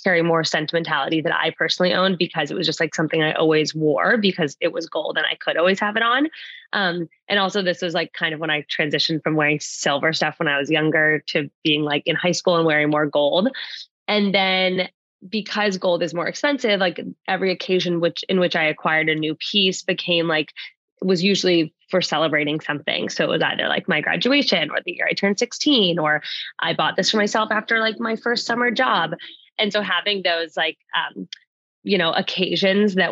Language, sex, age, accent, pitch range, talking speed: English, female, 20-39, American, 160-190 Hz, 210 wpm